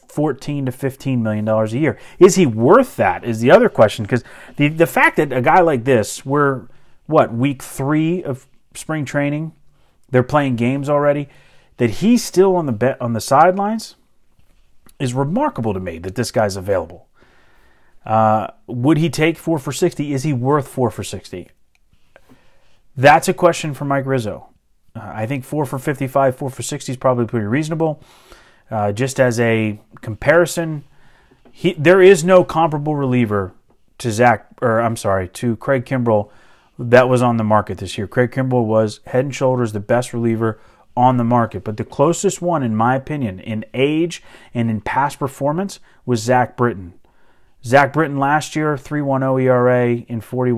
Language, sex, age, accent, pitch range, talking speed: English, male, 30-49, American, 115-145 Hz, 175 wpm